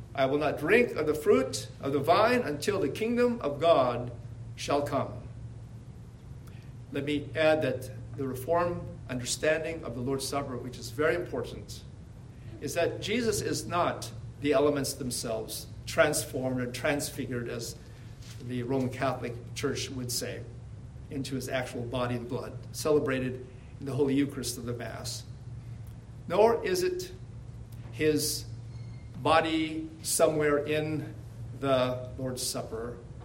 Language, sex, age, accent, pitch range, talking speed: English, male, 50-69, American, 120-145 Hz, 135 wpm